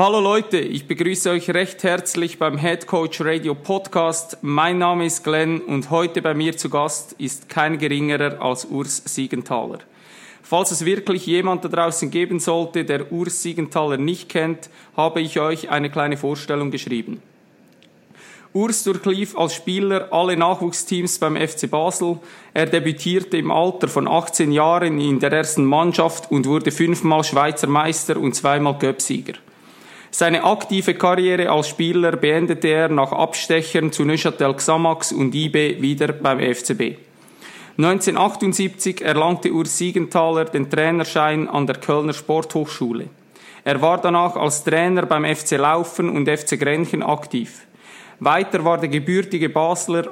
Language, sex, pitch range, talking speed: German, male, 150-175 Hz, 145 wpm